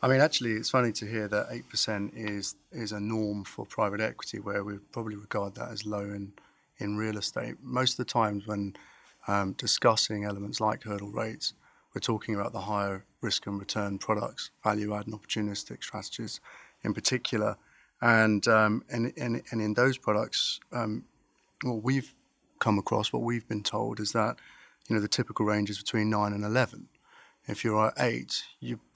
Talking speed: 180 wpm